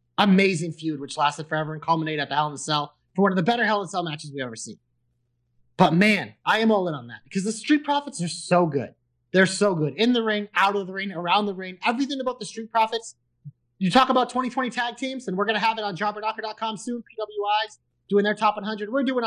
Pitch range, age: 165-225 Hz, 30-49